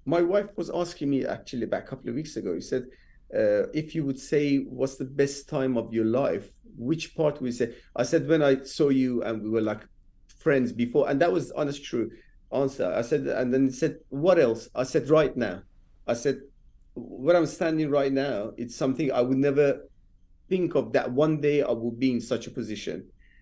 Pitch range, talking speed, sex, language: 120-160 Hz, 215 wpm, male, English